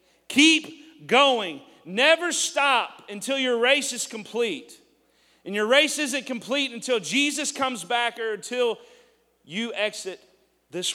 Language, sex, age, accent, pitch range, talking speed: English, male, 40-59, American, 165-245 Hz, 125 wpm